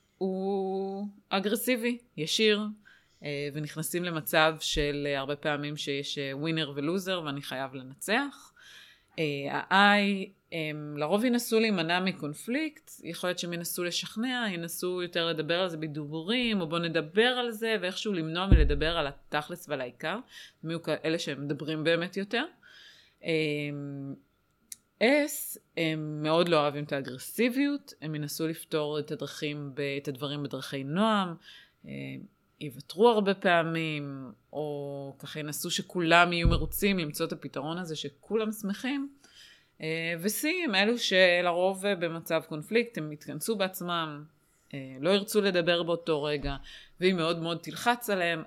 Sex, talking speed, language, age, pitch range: female, 100 wpm, English, 20-39, 150-195 Hz